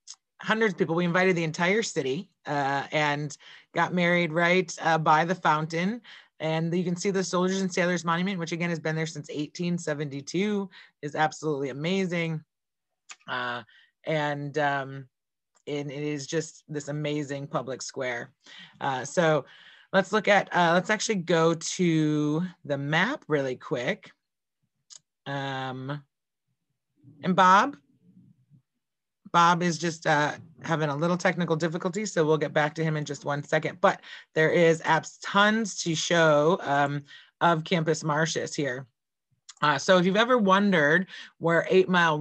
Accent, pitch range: American, 150-180 Hz